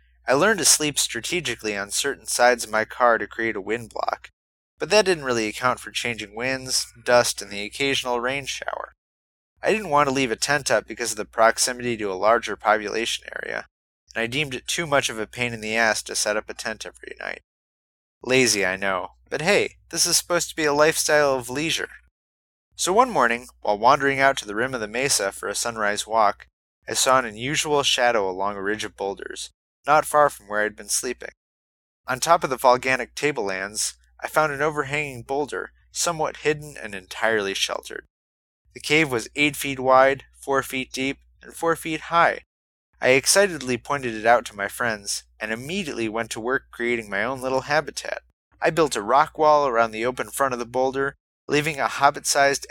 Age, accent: 30-49, American